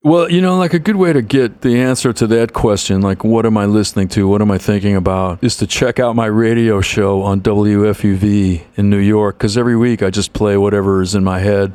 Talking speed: 245 wpm